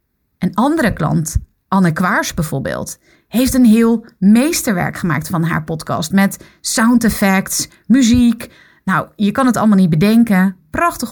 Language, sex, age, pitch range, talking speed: Dutch, female, 30-49, 175-230 Hz, 140 wpm